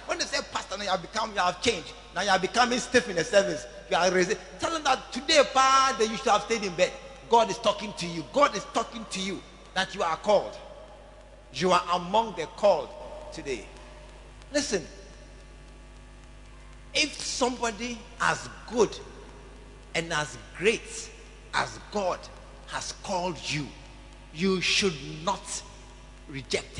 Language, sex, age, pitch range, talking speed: English, male, 50-69, 175-245 Hz, 150 wpm